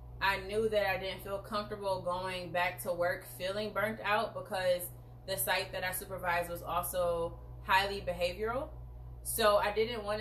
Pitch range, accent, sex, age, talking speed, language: 125-195 Hz, American, female, 20-39, 165 wpm, English